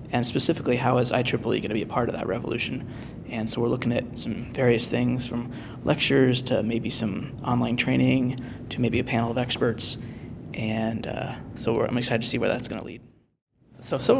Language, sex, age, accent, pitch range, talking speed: English, male, 20-39, American, 115-125 Hz, 205 wpm